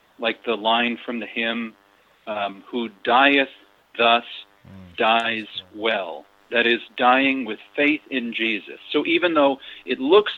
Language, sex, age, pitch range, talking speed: English, male, 50-69, 115-150 Hz, 140 wpm